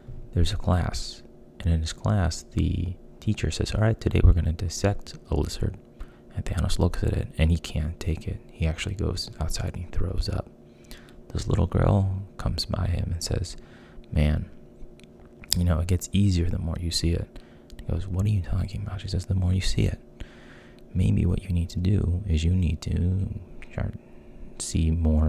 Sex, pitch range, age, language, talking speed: male, 85-100 Hz, 20-39, English, 195 wpm